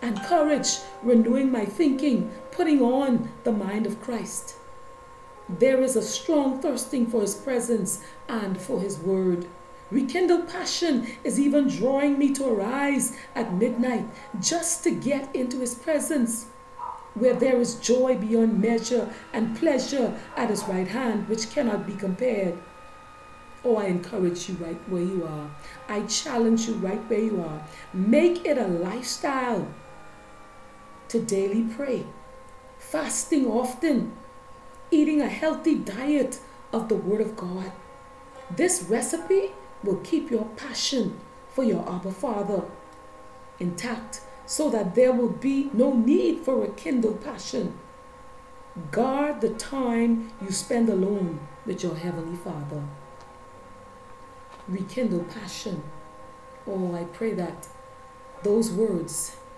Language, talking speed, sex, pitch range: English, 130 wpm, female, 195-265 Hz